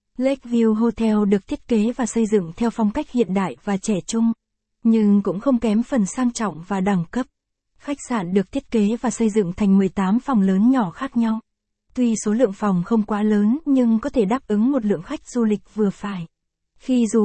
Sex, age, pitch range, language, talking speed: female, 20-39, 205-245 Hz, Vietnamese, 215 wpm